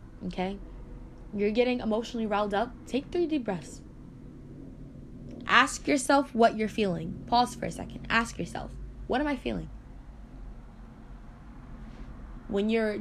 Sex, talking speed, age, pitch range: female, 125 wpm, 10-29, 180-235 Hz